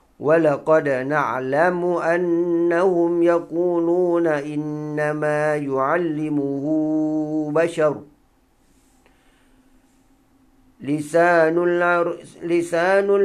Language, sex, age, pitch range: Thai, male, 50-69, 120-165 Hz